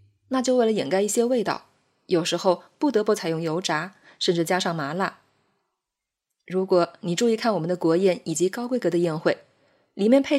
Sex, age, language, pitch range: female, 20-39, Chinese, 175-230 Hz